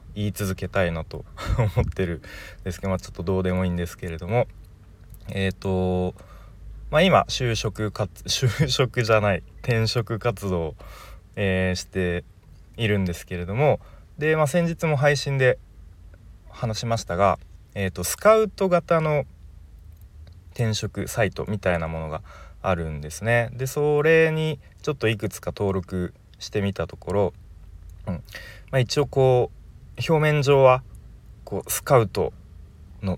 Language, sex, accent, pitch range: Japanese, male, native, 85-110 Hz